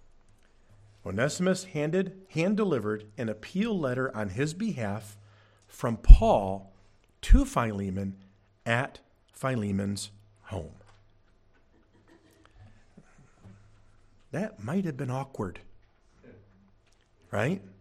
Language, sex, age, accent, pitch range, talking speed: English, male, 50-69, American, 105-165 Hz, 75 wpm